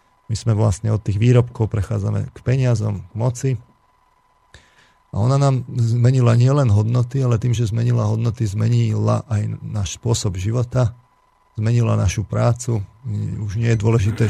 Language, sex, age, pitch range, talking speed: Slovak, male, 40-59, 100-120 Hz, 145 wpm